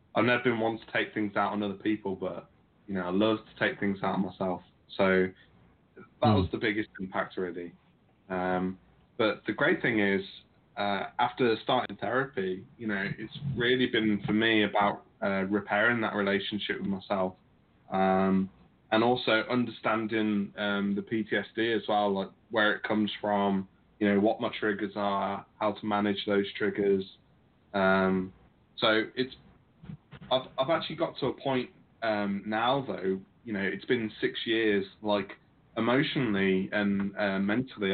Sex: male